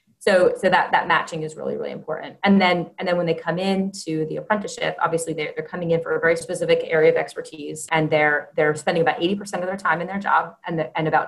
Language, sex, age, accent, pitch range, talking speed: English, female, 30-49, American, 150-195 Hz, 260 wpm